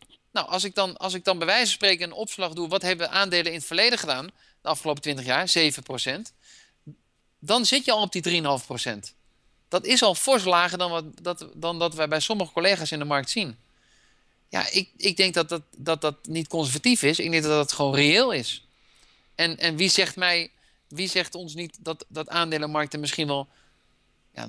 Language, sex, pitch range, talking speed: Dutch, male, 145-190 Hz, 215 wpm